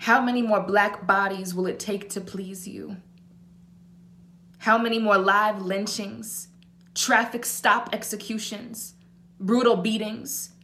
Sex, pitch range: female, 175-215 Hz